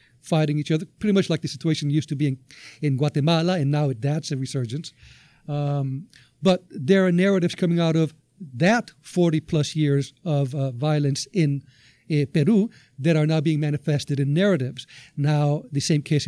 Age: 50-69